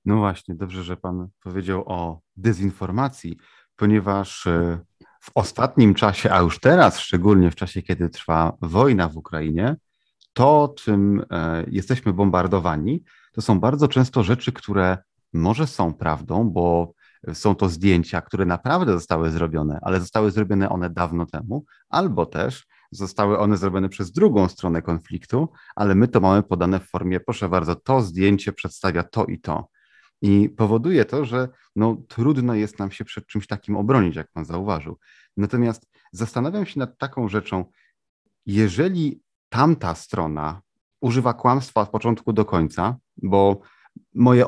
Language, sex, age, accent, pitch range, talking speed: Polish, male, 30-49, native, 90-115 Hz, 145 wpm